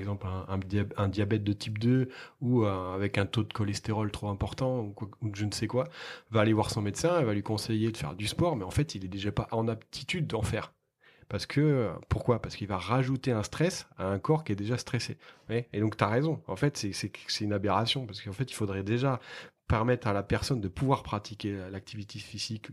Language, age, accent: French, 30-49, French